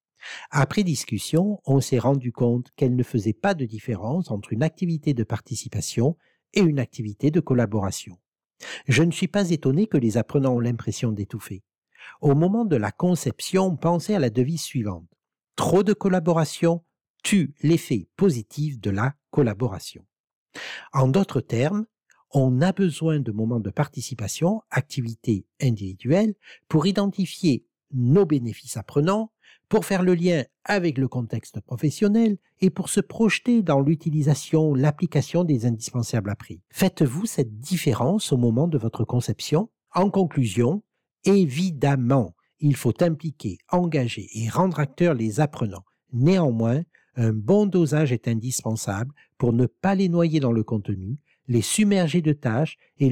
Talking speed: 145 wpm